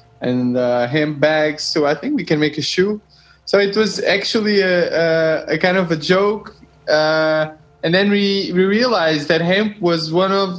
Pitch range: 150-180 Hz